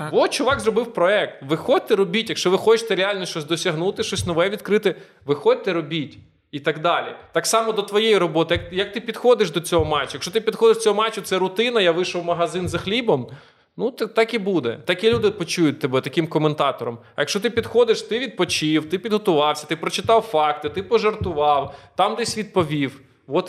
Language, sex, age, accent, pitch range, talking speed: Ukrainian, male, 20-39, native, 150-210 Hz, 185 wpm